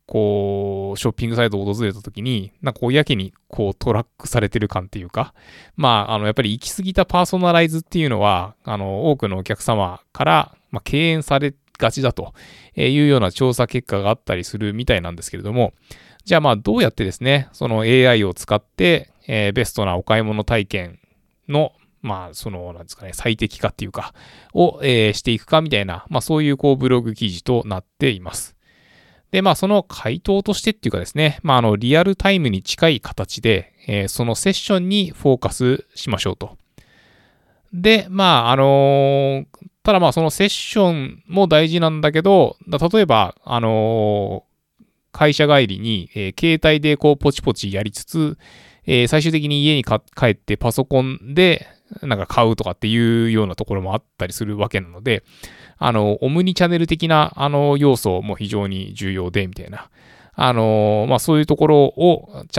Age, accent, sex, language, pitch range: 20-39, native, male, Japanese, 105-150 Hz